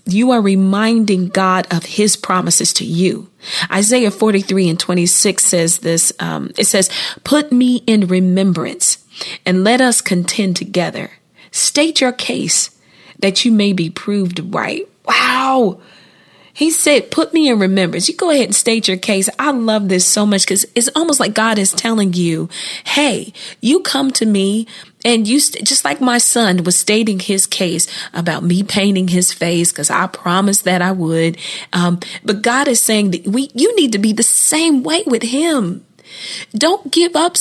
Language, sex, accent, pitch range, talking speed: English, female, American, 190-260 Hz, 175 wpm